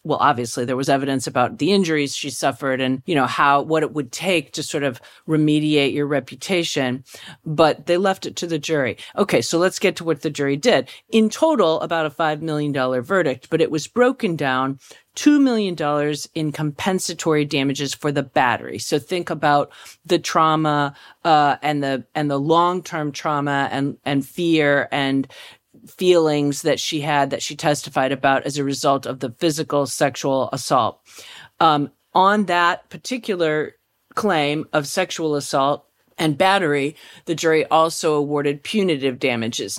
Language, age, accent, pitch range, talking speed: English, 40-59, American, 140-170 Hz, 165 wpm